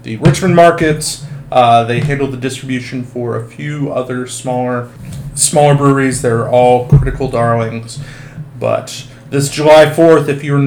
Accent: American